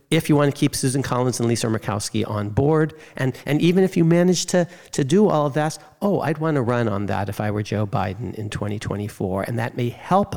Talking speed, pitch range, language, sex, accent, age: 245 wpm, 115-155 Hz, English, male, American, 50-69